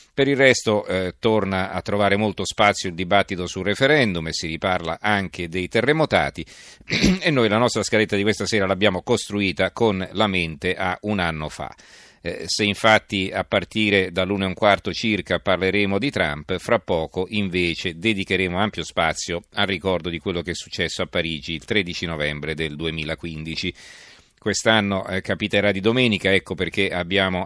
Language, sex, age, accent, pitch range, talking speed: Italian, male, 40-59, native, 90-105 Hz, 170 wpm